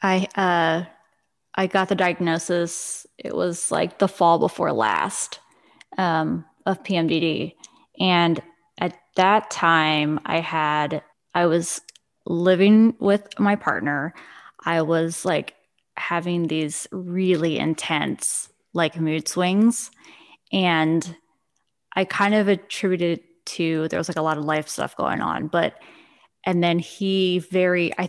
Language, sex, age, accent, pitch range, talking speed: English, female, 20-39, American, 170-220 Hz, 130 wpm